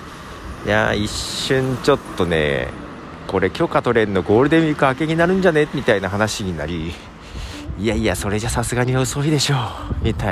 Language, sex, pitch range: Japanese, male, 80-135 Hz